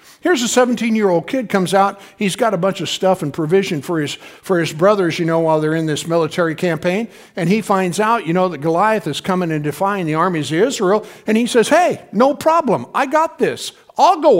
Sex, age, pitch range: male, 50-69, 205-285 Hz